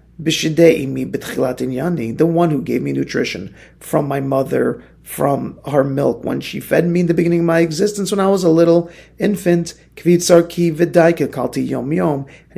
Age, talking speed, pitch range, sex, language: 40-59, 140 wpm, 140-185 Hz, male, English